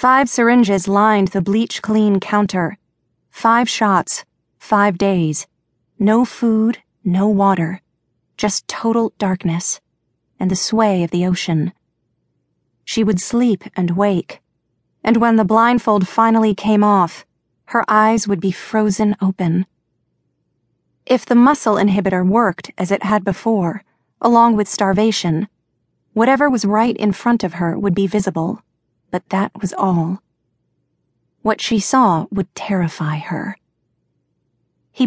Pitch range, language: 185-225 Hz, English